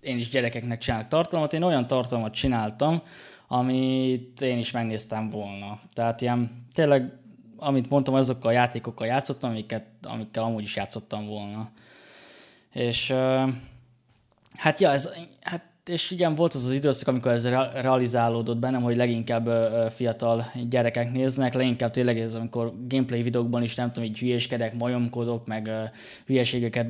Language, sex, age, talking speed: Hungarian, male, 20-39, 140 wpm